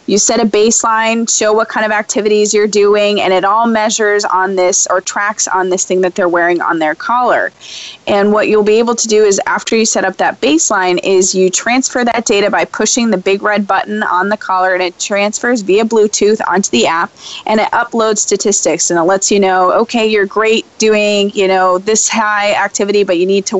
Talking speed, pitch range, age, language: 220 wpm, 180-215 Hz, 20-39, English